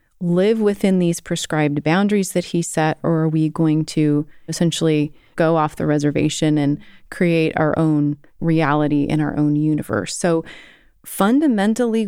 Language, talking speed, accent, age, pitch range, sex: English, 145 wpm, American, 30-49, 155-185 Hz, female